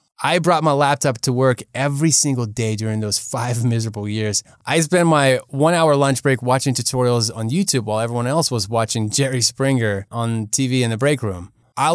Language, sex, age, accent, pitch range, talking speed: English, male, 20-39, American, 110-145 Hz, 190 wpm